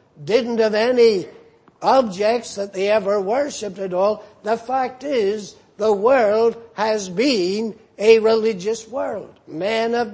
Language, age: English, 60-79